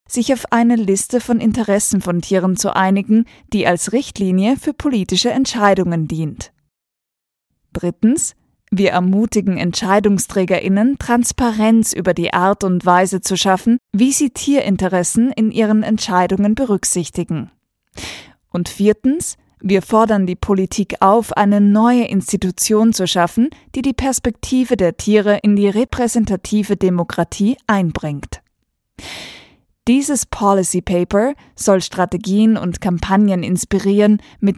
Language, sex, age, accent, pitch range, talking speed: German, female, 20-39, German, 185-230 Hz, 115 wpm